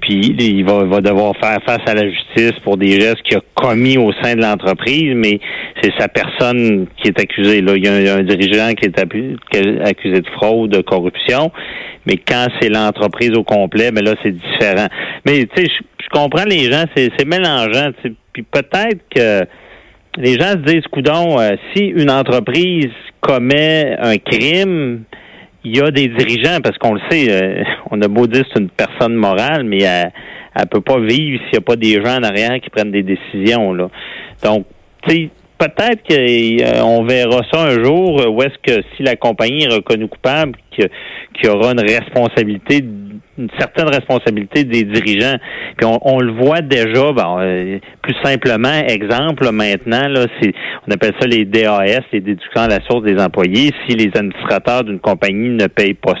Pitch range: 100-130 Hz